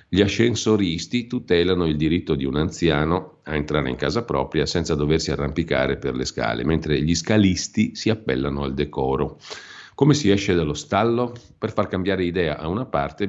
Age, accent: 50-69, native